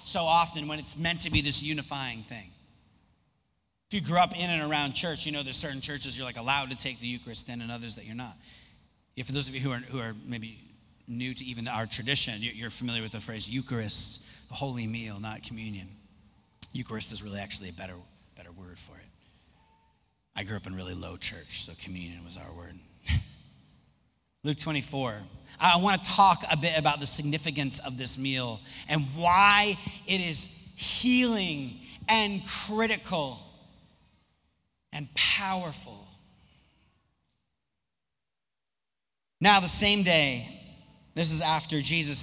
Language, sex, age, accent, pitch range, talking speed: English, male, 30-49, American, 110-160 Hz, 160 wpm